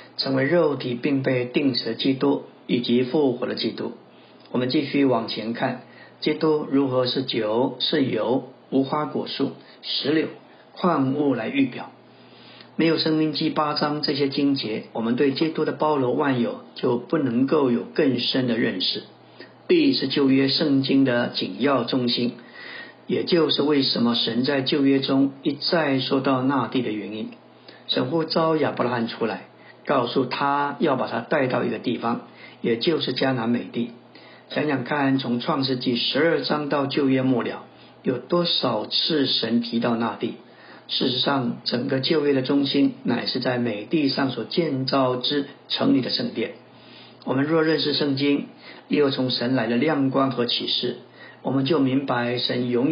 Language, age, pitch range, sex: Chinese, 60-79, 125-145 Hz, male